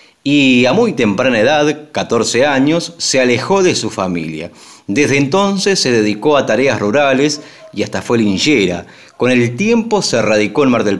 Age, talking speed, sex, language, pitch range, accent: 30-49, 170 wpm, male, Spanish, 100-140 Hz, Argentinian